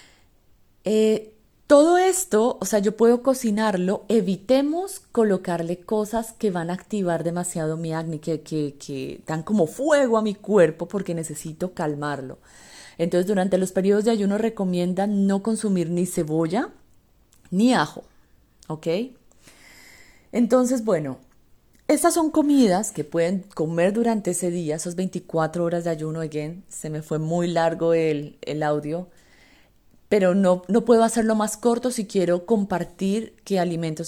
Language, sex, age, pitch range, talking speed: Spanish, female, 30-49, 160-205 Hz, 140 wpm